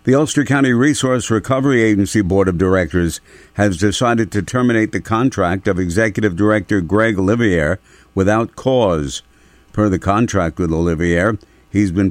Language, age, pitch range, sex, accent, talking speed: English, 50-69, 95-110 Hz, male, American, 145 wpm